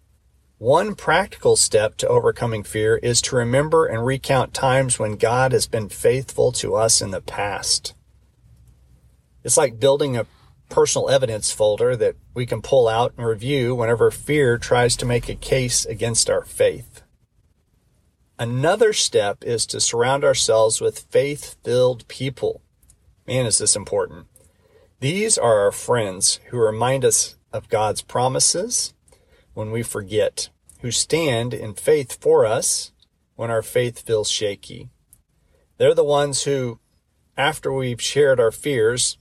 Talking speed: 140 wpm